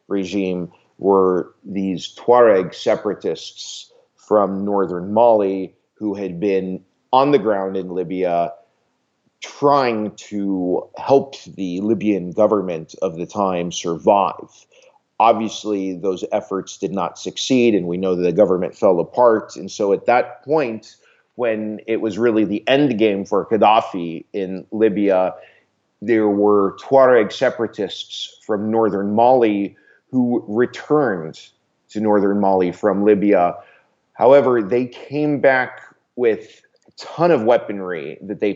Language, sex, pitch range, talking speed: English, male, 95-125 Hz, 125 wpm